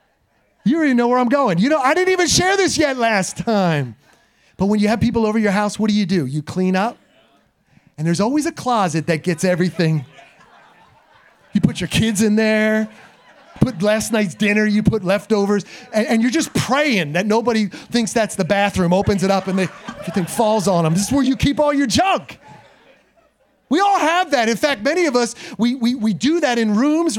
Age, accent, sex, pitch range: 30-49, American, male, 200-275 Hz